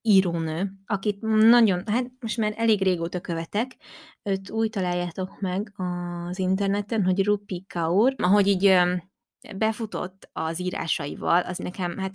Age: 20-39